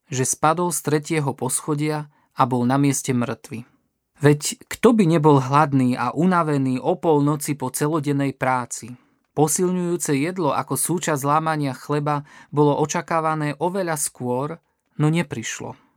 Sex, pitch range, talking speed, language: male, 135-165 Hz, 130 wpm, Slovak